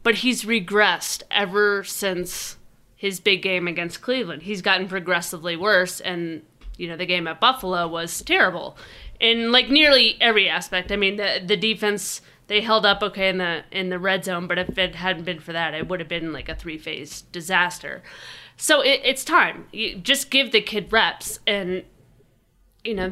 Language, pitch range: English, 180-220 Hz